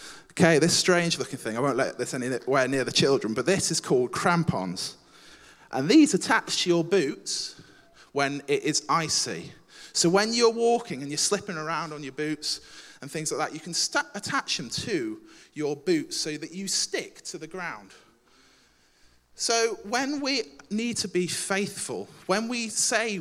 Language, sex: English, male